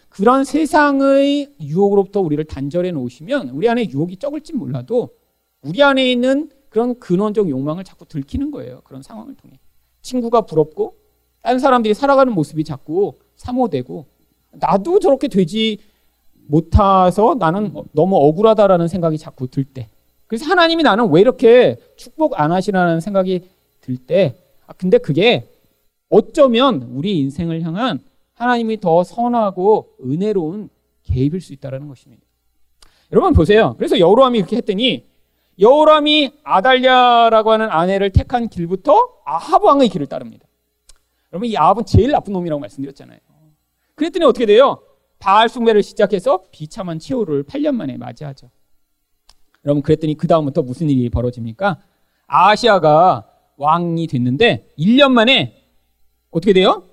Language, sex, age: Korean, male, 40-59